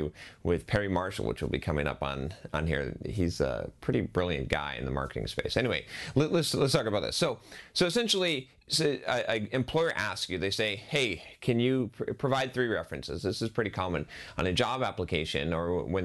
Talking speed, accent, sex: 195 wpm, American, male